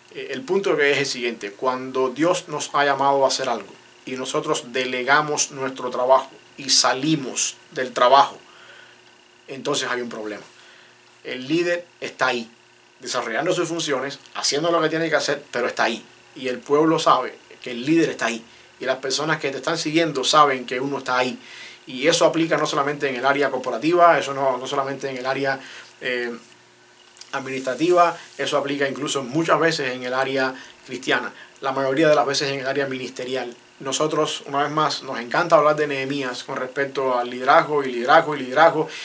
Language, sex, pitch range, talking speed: English, male, 130-155 Hz, 180 wpm